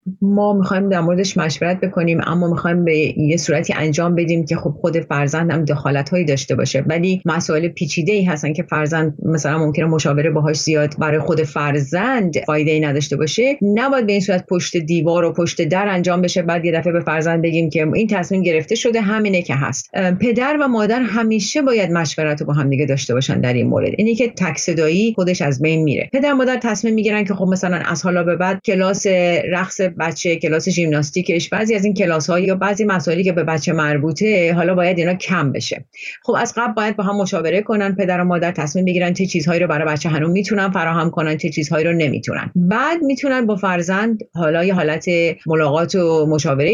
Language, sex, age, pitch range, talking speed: Persian, female, 30-49, 160-200 Hz, 195 wpm